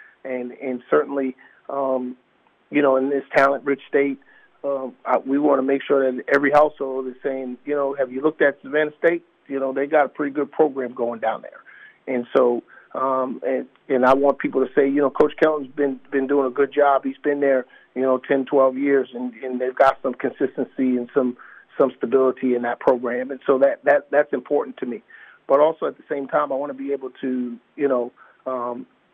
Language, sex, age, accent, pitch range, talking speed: English, male, 40-59, American, 130-145 Hz, 215 wpm